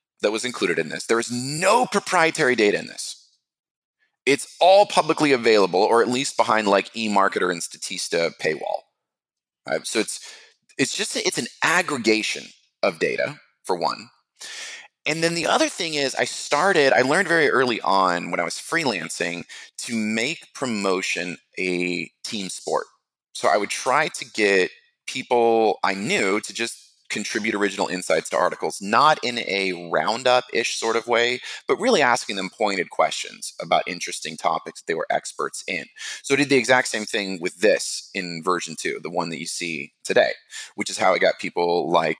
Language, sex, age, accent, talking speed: English, male, 30-49, American, 175 wpm